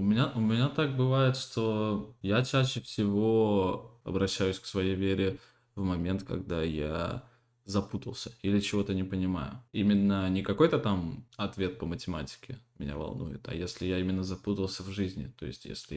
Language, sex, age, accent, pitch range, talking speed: Russian, male, 20-39, native, 95-115 Hz, 155 wpm